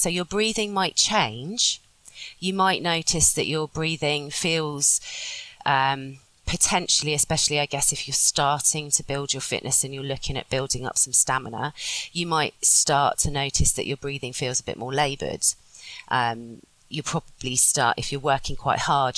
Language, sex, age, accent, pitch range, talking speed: English, female, 30-49, British, 125-160 Hz, 165 wpm